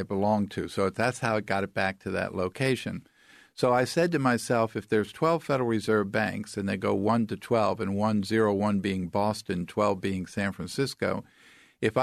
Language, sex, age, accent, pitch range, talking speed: English, male, 50-69, American, 105-130 Hz, 200 wpm